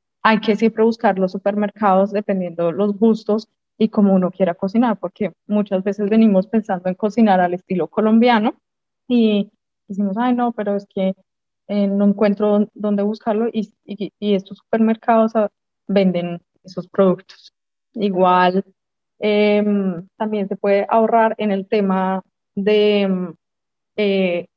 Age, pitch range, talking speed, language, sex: 20-39, 195-220 Hz, 135 wpm, Spanish, female